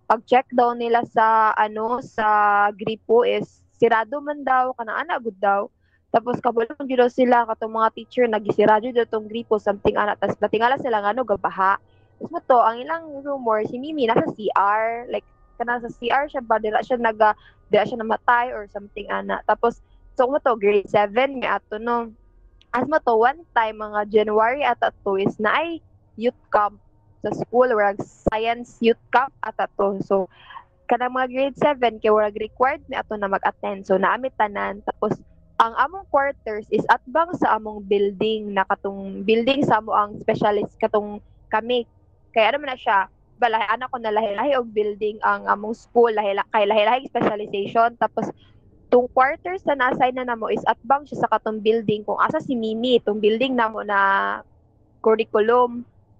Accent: native